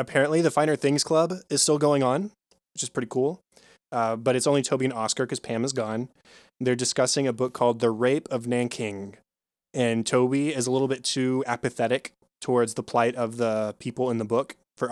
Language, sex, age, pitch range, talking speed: English, male, 20-39, 120-145 Hz, 205 wpm